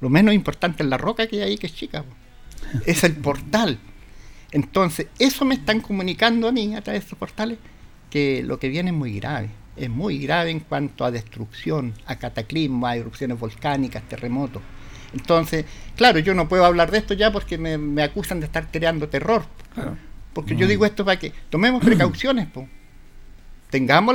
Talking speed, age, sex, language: 190 wpm, 60-79, male, Spanish